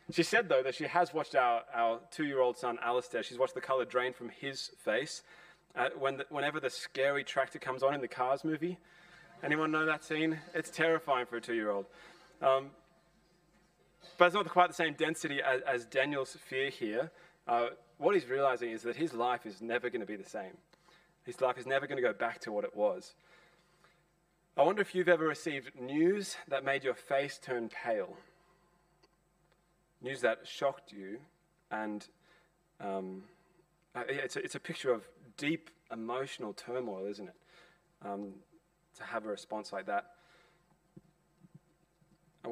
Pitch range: 130-175 Hz